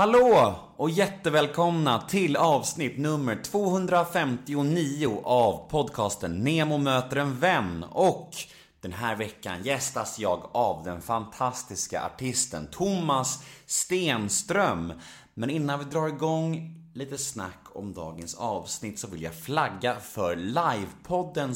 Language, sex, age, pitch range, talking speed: Swedish, male, 30-49, 100-155 Hz, 115 wpm